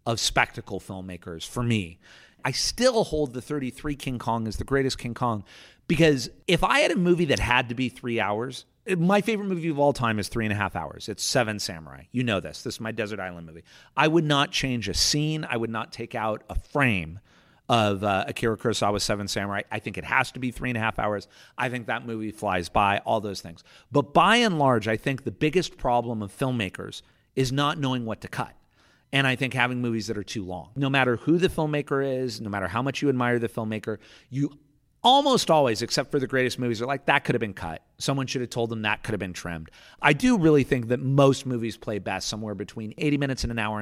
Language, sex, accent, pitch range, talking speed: English, male, American, 105-140 Hz, 235 wpm